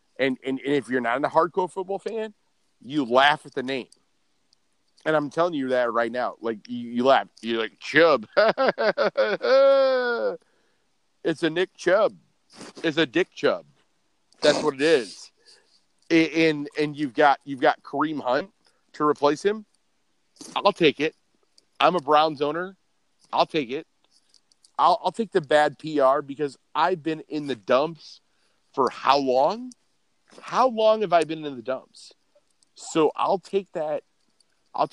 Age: 50-69